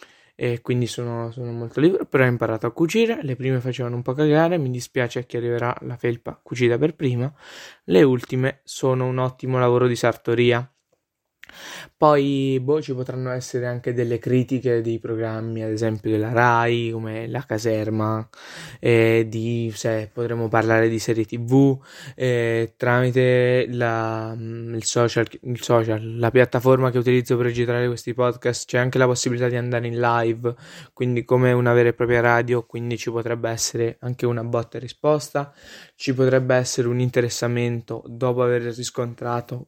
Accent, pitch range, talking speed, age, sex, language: native, 115-130 Hz, 155 wpm, 20-39, male, Italian